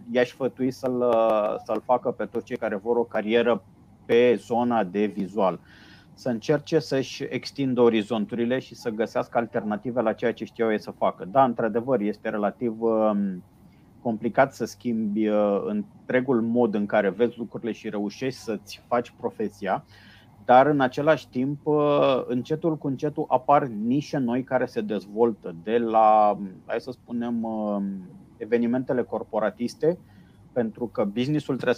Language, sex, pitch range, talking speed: Romanian, male, 110-130 Hz, 145 wpm